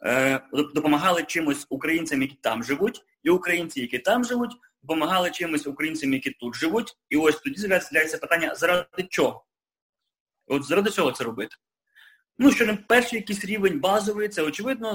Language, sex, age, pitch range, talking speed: English, male, 30-49, 145-230 Hz, 150 wpm